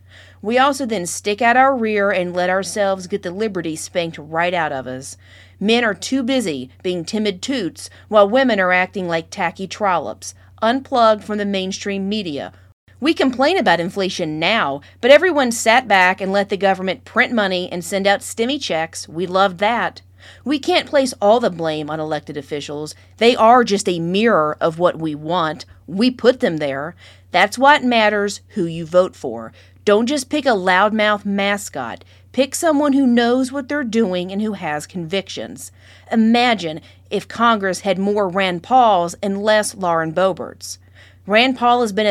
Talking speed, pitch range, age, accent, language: 170 wpm, 160-230 Hz, 40-59, American, English